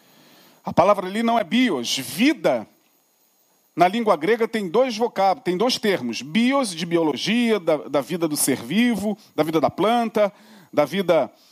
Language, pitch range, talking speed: Portuguese, 180-235 Hz, 160 wpm